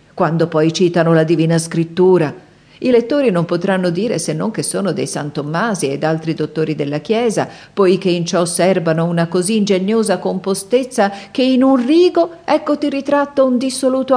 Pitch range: 160-225 Hz